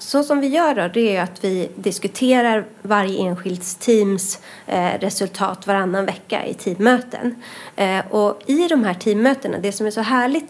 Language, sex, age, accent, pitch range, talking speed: Swedish, female, 30-49, native, 195-265 Hz, 160 wpm